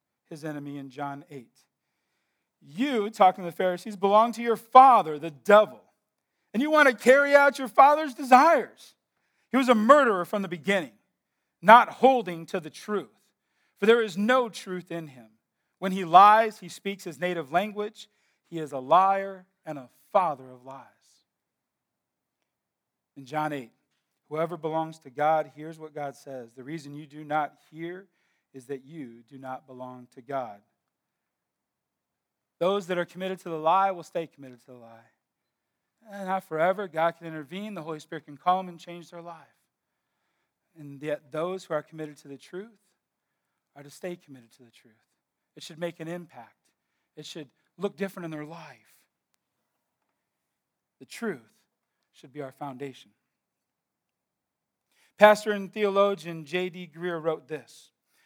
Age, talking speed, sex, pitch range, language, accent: 40-59, 160 wpm, male, 145-200 Hz, English, American